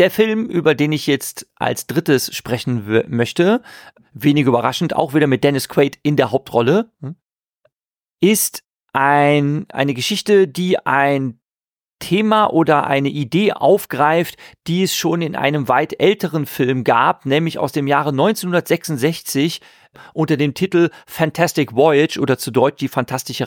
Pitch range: 140-175 Hz